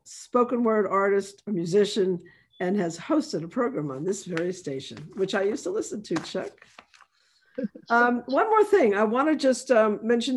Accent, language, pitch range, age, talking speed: American, English, 180-225 Hz, 50-69, 175 wpm